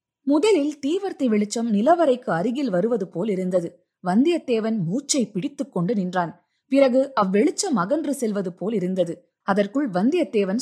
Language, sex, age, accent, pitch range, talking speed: Tamil, female, 20-39, native, 185-260 Hz, 115 wpm